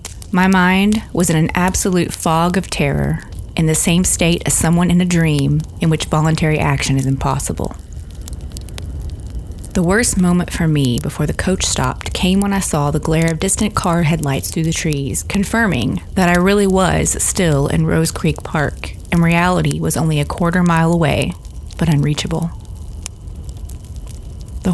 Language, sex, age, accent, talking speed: English, female, 30-49, American, 165 wpm